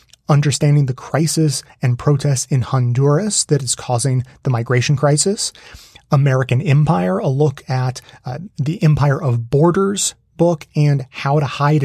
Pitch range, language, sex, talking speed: 125-150 Hz, English, male, 140 wpm